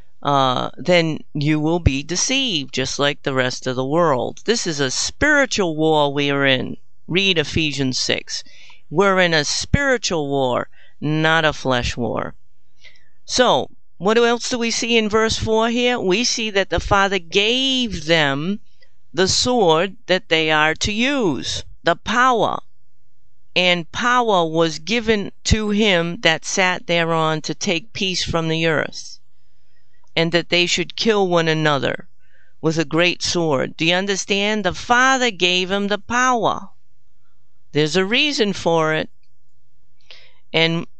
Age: 50-69